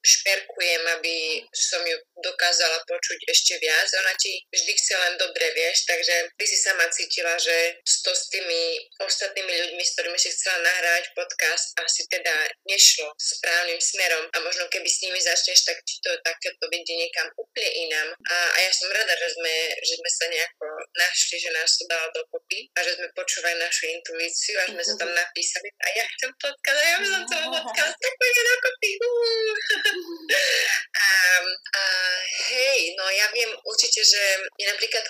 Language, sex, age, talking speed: Slovak, female, 20-39, 180 wpm